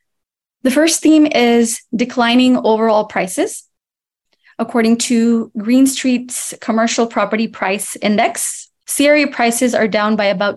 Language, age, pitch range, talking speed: English, 20-39, 205-245 Hz, 120 wpm